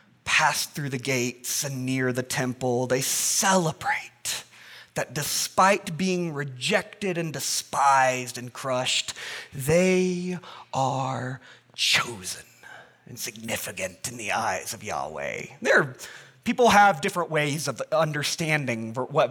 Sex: male